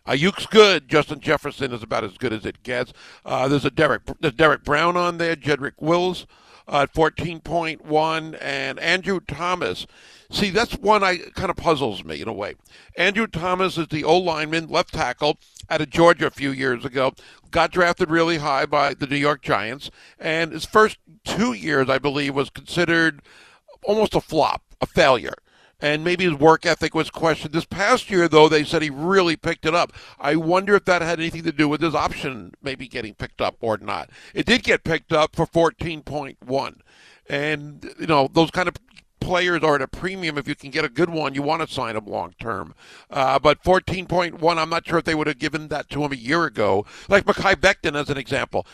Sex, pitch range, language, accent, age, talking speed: male, 145-175 Hz, English, American, 60-79, 205 wpm